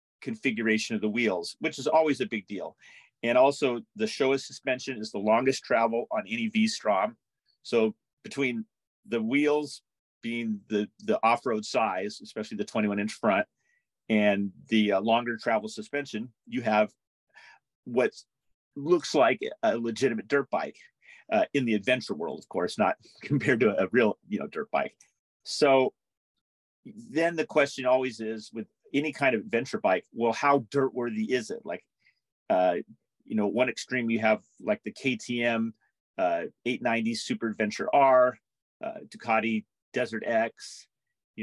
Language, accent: English, American